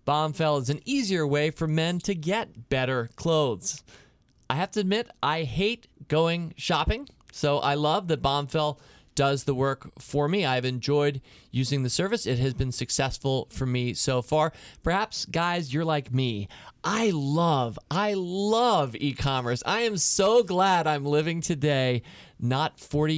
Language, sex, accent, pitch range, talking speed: English, male, American, 125-165 Hz, 160 wpm